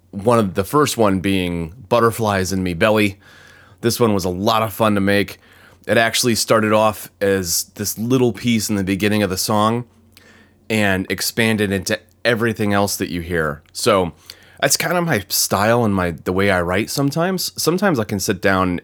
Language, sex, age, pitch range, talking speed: English, male, 30-49, 95-115 Hz, 190 wpm